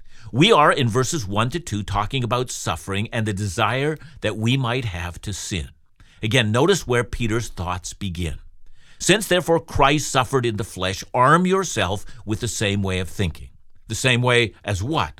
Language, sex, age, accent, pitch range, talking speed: English, male, 50-69, American, 105-165 Hz, 180 wpm